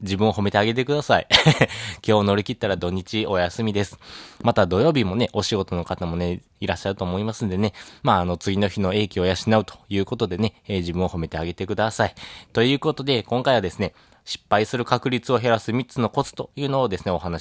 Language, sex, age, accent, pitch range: Japanese, male, 20-39, native, 90-115 Hz